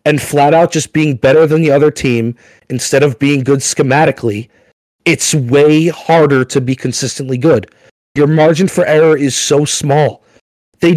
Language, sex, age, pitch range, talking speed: English, male, 30-49, 140-175 Hz, 165 wpm